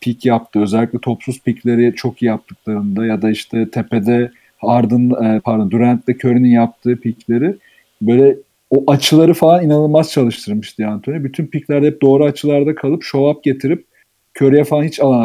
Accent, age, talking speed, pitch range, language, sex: native, 40-59, 145 wpm, 115-145 Hz, Turkish, male